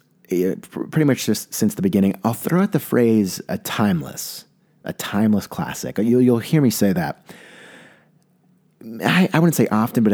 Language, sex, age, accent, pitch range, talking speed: English, male, 30-49, American, 100-170 Hz, 170 wpm